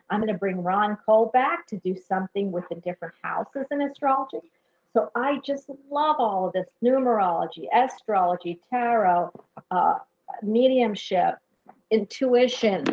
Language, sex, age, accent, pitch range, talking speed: English, female, 50-69, American, 185-240 Hz, 135 wpm